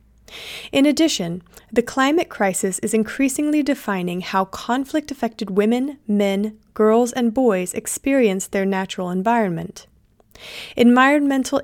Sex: female